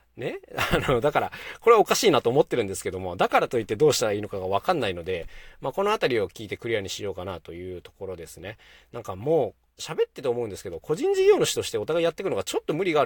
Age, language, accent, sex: 40-59, Japanese, native, male